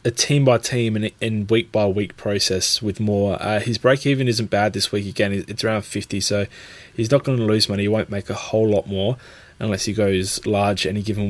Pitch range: 100-115 Hz